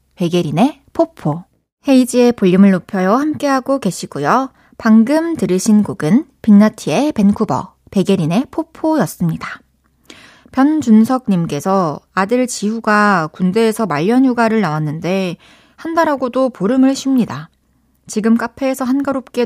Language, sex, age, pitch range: Korean, female, 20-39, 185-250 Hz